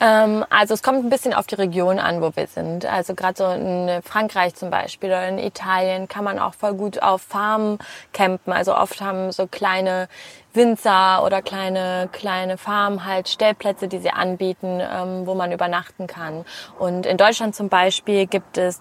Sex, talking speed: female, 180 wpm